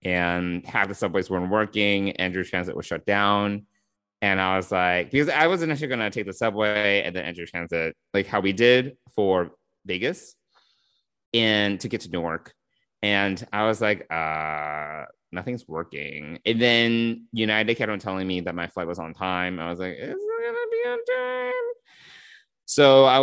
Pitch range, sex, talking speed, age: 90-125 Hz, male, 185 wpm, 30-49